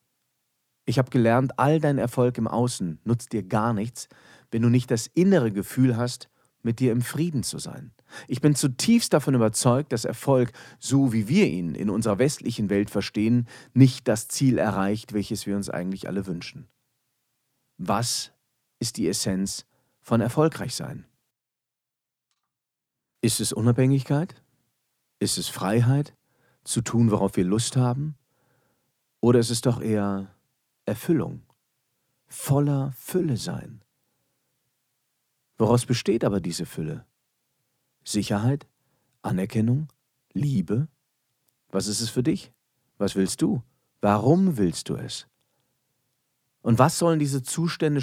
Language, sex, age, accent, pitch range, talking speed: German, male, 40-59, German, 110-135 Hz, 130 wpm